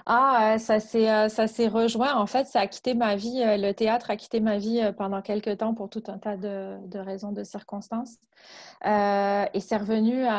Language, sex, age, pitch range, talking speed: French, female, 20-39, 200-225 Hz, 210 wpm